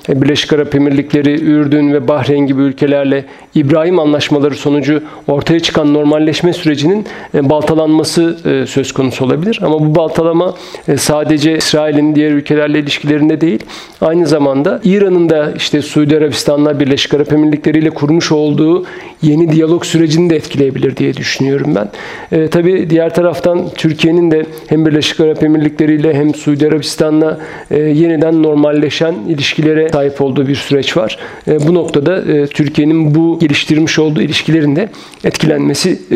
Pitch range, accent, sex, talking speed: 145-160 Hz, native, male, 130 wpm